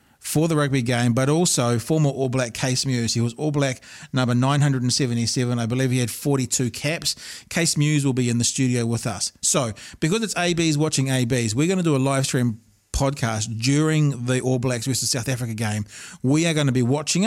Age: 40-59